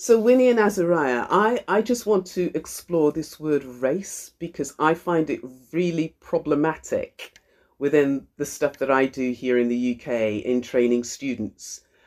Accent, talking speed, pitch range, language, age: British, 160 wpm, 135-195 Hz, English, 50-69